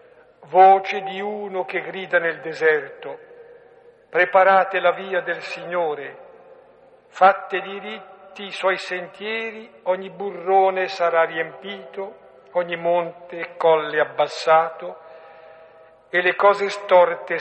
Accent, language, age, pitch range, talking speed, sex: native, Italian, 60-79, 160-205 Hz, 105 wpm, male